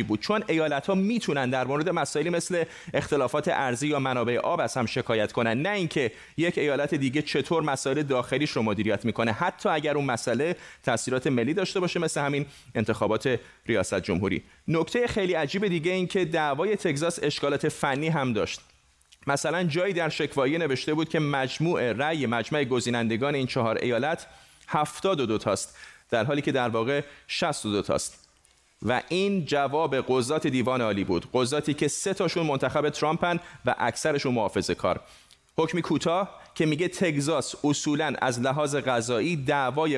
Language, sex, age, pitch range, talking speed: Persian, male, 30-49, 125-160 Hz, 155 wpm